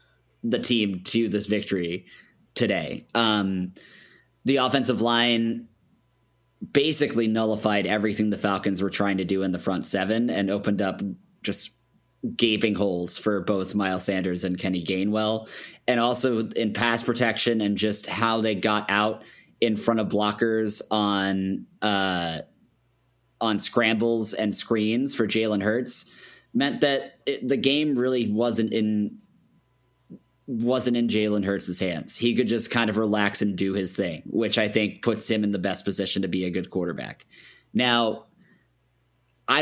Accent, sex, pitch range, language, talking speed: American, male, 100-115 Hz, English, 150 wpm